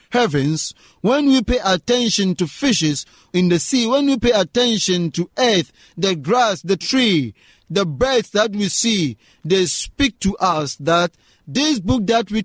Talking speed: 165 wpm